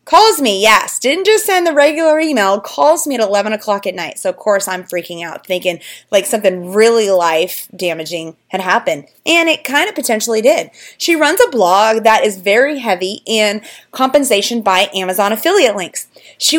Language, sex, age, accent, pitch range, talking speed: English, female, 30-49, American, 195-270 Hz, 185 wpm